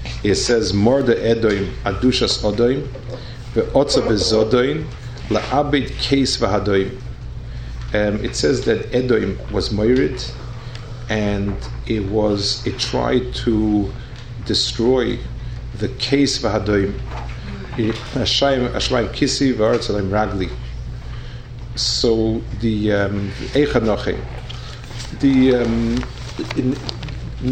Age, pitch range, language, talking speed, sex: 50-69, 105-125 Hz, English, 85 wpm, male